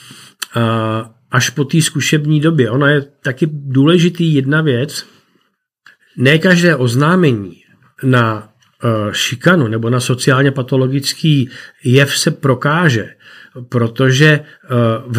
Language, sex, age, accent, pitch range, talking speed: Czech, male, 40-59, native, 125-145 Hz, 95 wpm